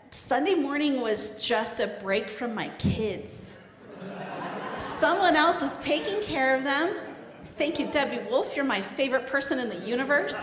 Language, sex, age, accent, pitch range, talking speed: English, female, 40-59, American, 220-275 Hz, 155 wpm